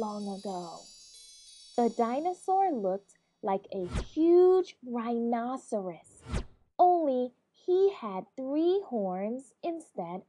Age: 20-39